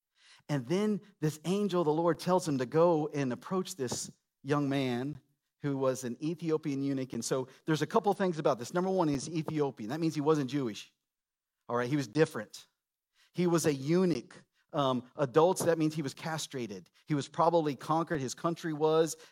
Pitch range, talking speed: 135-170 Hz, 195 wpm